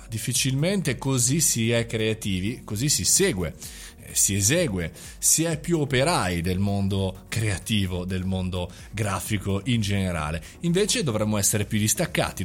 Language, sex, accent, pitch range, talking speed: Italian, male, native, 100-145 Hz, 130 wpm